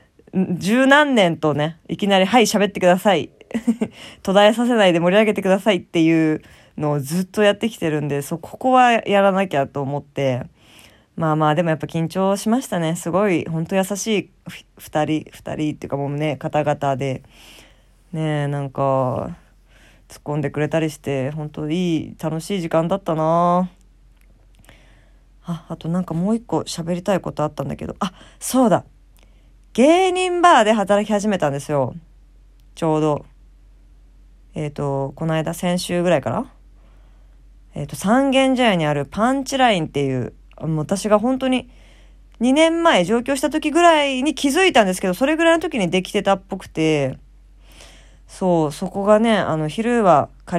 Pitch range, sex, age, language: 150-210 Hz, female, 20-39, Japanese